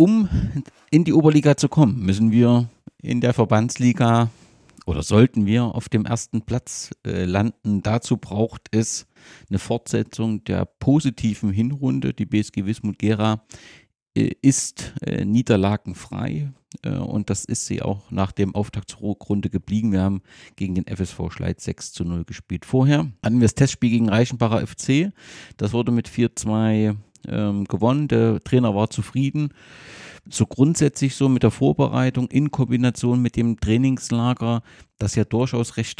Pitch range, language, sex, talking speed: 105-130 Hz, German, male, 145 wpm